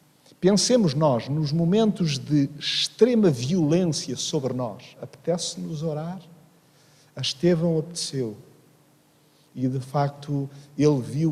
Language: Portuguese